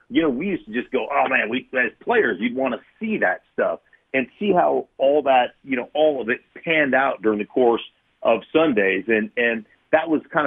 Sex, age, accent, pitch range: male, 40-59, American, 130-215 Hz